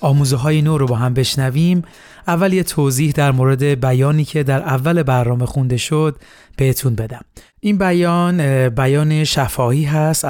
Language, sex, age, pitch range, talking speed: Persian, male, 30-49, 130-160 Hz, 150 wpm